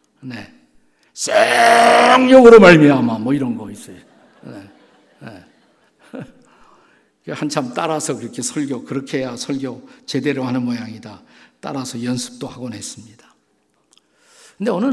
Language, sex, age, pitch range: Korean, male, 50-69, 120-165 Hz